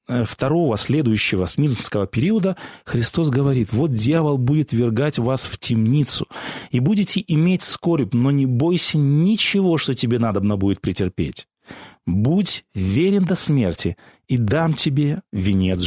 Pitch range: 115-175 Hz